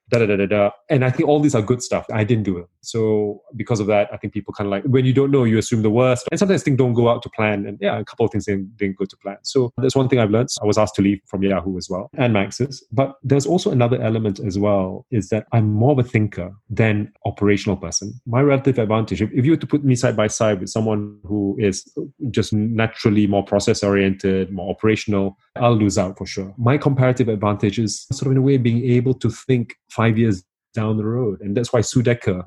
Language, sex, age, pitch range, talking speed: English, male, 30-49, 105-135 Hz, 255 wpm